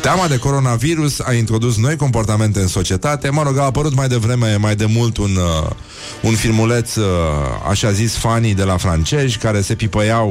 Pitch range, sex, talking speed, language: 95-125 Hz, male, 170 wpm, Romanian